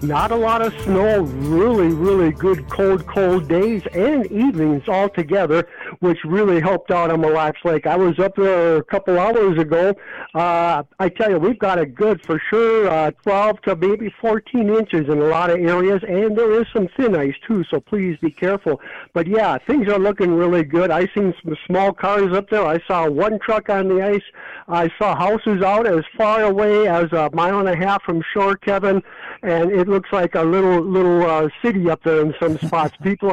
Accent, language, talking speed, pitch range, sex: American, English, 205 wpm, 165-200 Hz, male